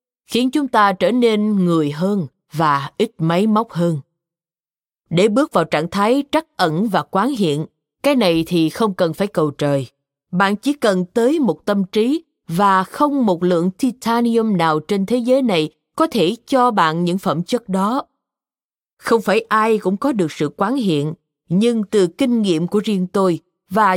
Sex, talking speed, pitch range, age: female, 180 wpm, 165-235 Hz, 20-39